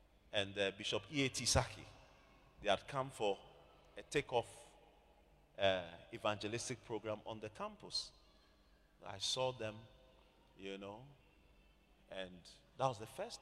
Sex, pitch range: male, 110-160 Hz